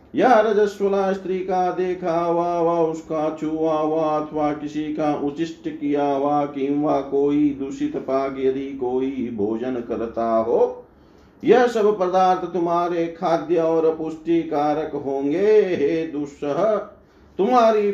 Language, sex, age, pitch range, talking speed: Hindi, male, 50-69, 145-180 Hz, 120 wpm